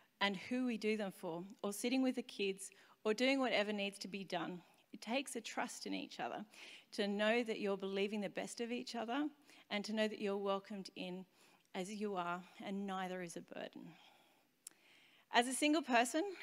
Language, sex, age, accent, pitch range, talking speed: English, female, 30-49, Australian, 190-240 Hz, 195 wpm